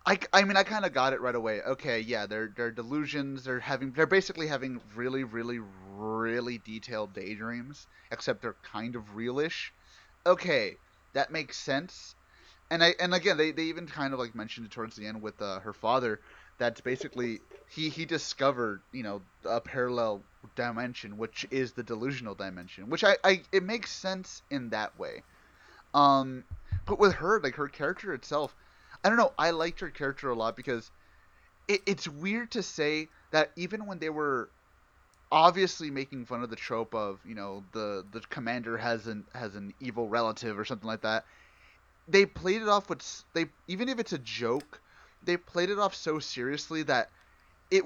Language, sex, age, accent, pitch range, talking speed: English, male, 30-49, American, 115-165 Hz, 185 wpm